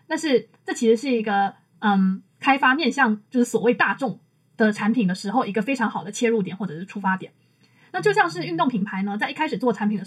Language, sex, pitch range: Chinese, female, 200-250 Hz